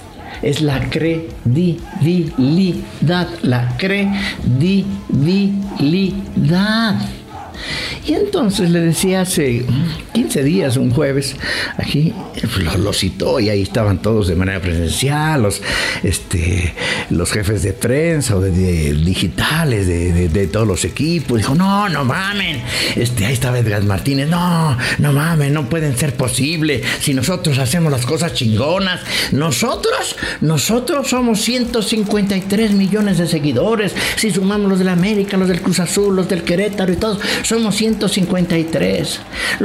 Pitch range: 120-195 Hz